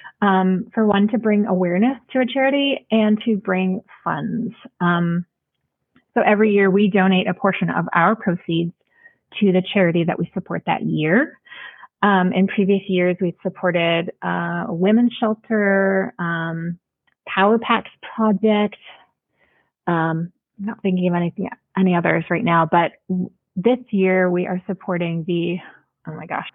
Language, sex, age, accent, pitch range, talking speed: English, female, 30-49, American, 175-220 Hz, 150 wpm